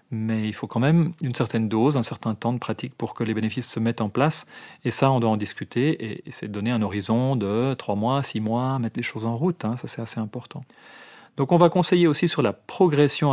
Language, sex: French, male